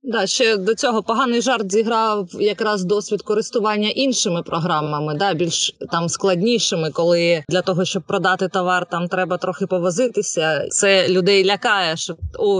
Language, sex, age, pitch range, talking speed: Ukrainian, female, 20-39, 185-235 Hz, 145 wpm